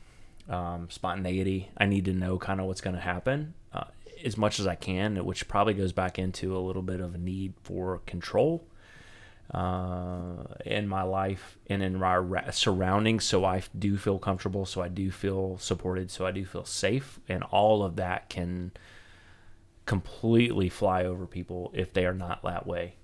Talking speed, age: 180 wpm, 30-49